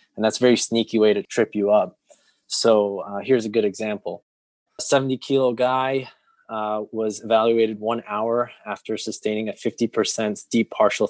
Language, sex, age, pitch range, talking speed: English, male, 20-39, 105-120 Hz, 160 wpm